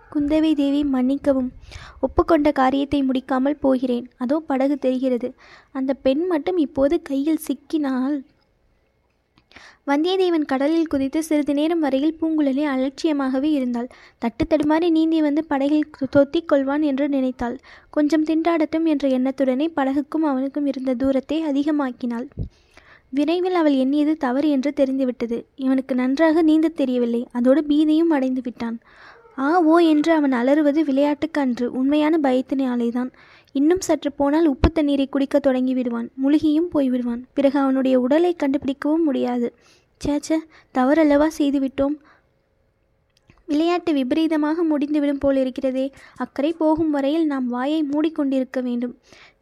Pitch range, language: 265-310 Hz, Tamil